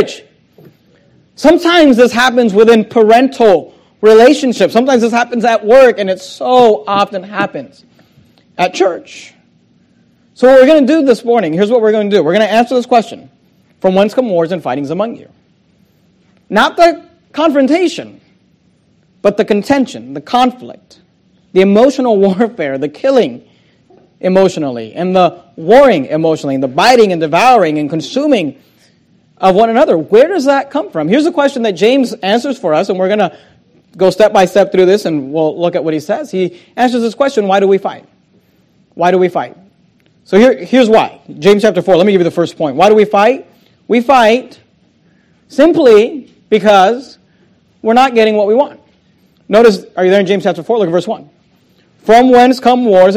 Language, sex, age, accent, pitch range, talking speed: English, male, 40-59, American, 190-255 Hz, 180 wpm